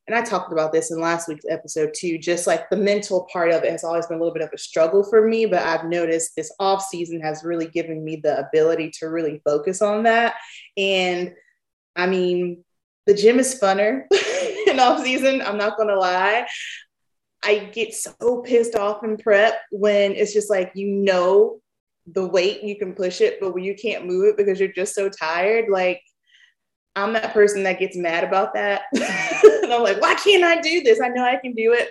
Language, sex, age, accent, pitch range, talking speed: English, female, 20-39, American, 170-225 Hz, 215 wpm